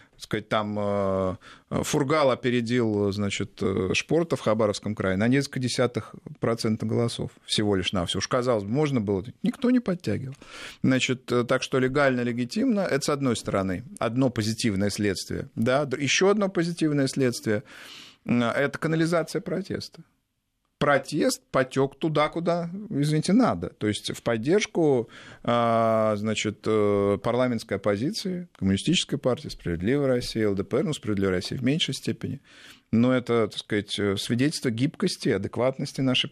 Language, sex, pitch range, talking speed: Russian, male, 105-145 Hz, 130 wpm